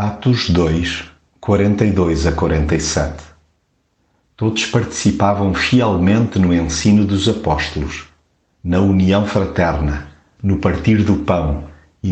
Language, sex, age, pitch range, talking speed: Portuguese, male, 50-69, 80-105 Hz, 90 wpm